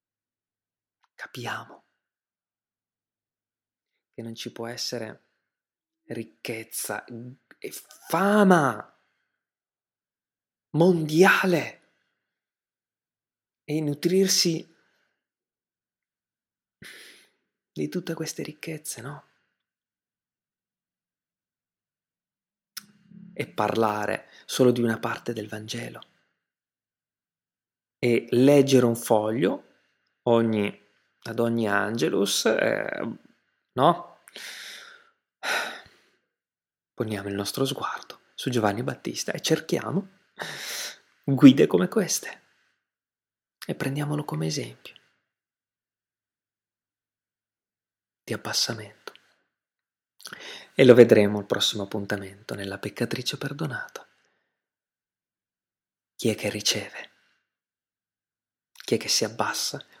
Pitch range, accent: 105-150 Hz, native